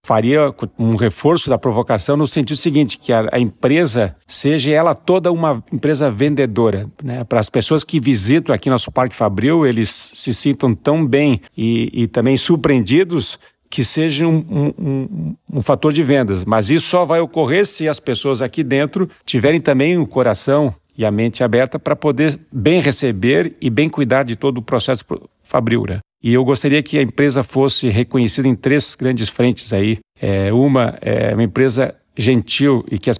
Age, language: 50-69, Portuguese